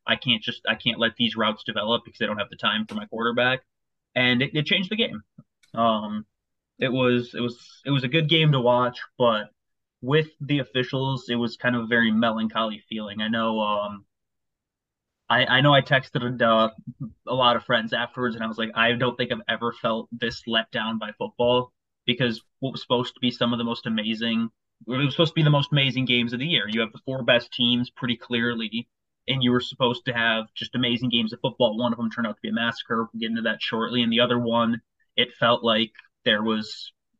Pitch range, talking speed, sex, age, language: 115-130 Hz, 230 wpm, male, 20-39, English